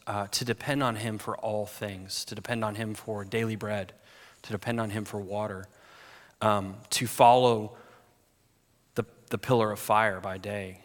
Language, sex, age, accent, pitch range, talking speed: English, male, 30-49, American, 105-125 Hz, 170 wpm